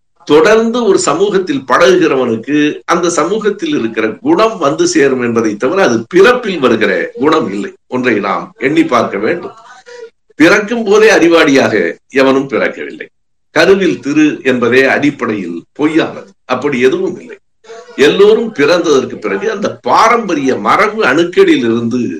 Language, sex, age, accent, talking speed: Tamil, male, 60-79, native, 115 wpm